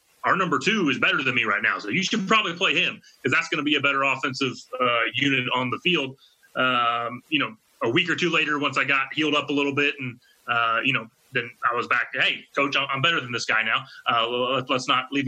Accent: American